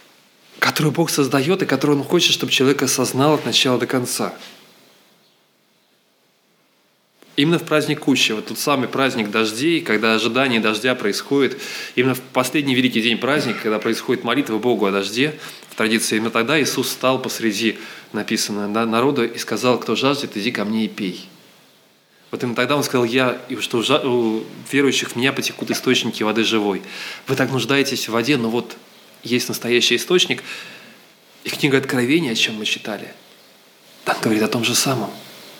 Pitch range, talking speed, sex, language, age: 120-150 Hz, 160 wpm, male, Russian, 20-39